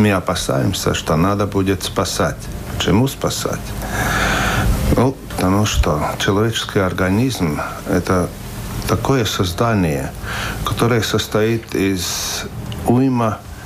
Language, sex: Russian, male